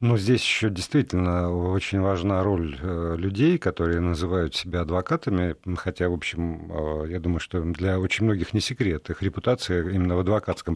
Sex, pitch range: male, 90-115 Hz